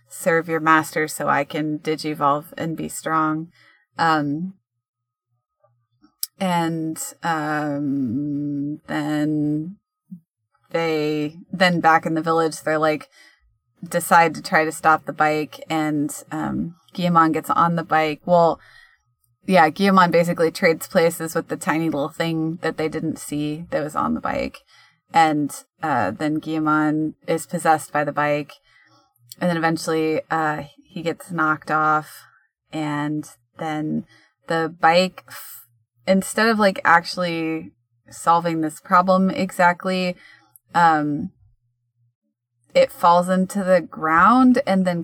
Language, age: English, 20-39